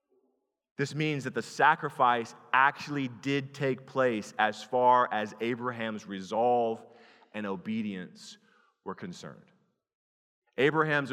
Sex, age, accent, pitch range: male, 30-49, American, 110-140 Hz